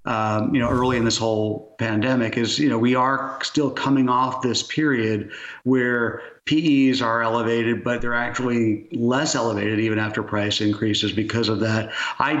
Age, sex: 50-69, male